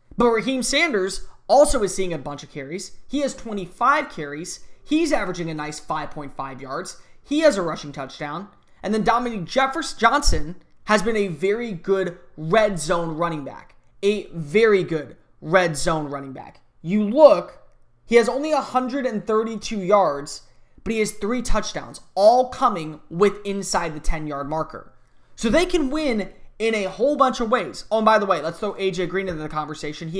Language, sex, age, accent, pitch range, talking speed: English, male, 20-39, American, 165-225 Hz, 175 wpm